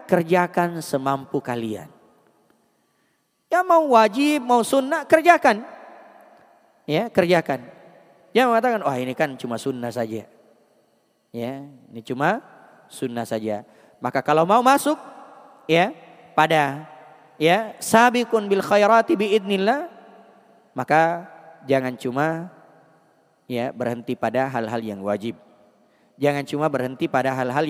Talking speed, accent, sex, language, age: 110 wpm, native, male, Indonesian, 30-49